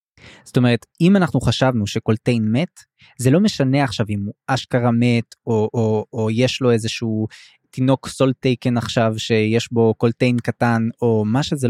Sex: male